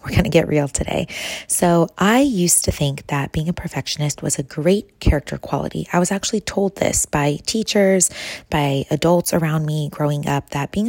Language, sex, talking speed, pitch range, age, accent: English, female, 195 wpm, 150-185 Hz, 20-39, American